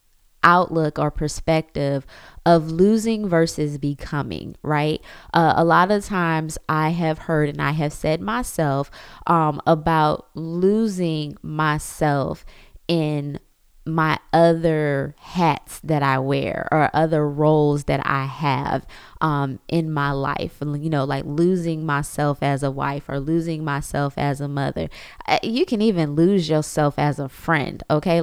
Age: 20-39